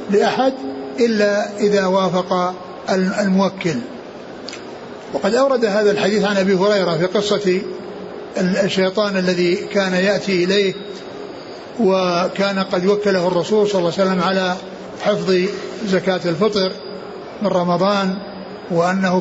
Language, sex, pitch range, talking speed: Arabic, male, 185-210 Hz, 105 wpm